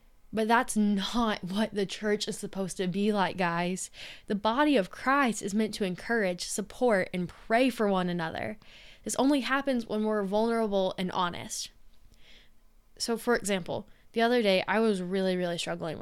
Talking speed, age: 170 wpm, 10-29